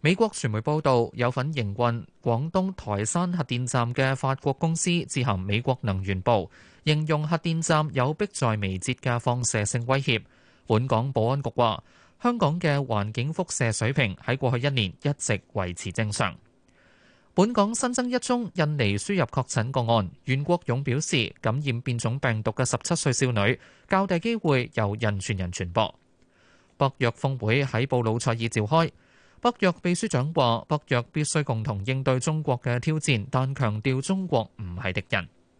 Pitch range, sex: 115-155 Hz, male